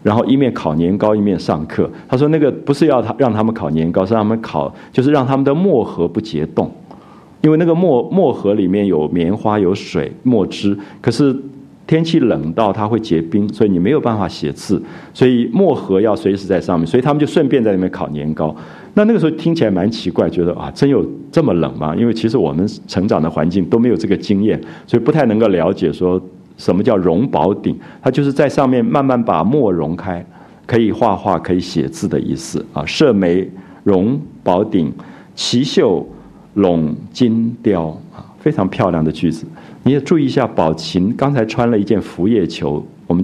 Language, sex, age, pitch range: Japanese, male, 50-69, 90-145 Hz